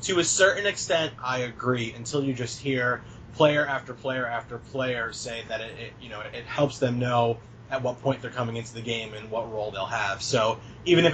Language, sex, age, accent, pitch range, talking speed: English, male, 20-39, American, 115-130 Hz, 225 wpm